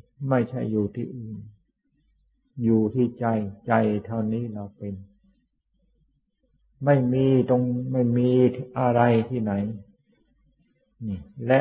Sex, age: male, 60-79